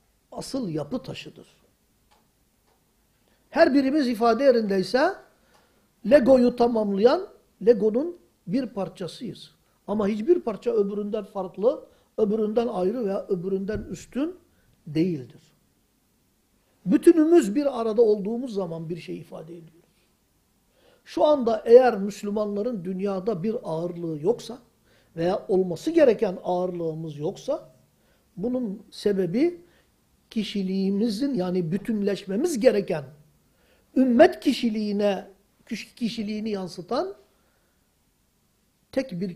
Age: 60-79